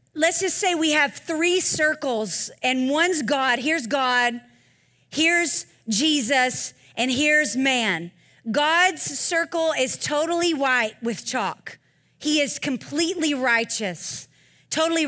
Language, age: English, 40-59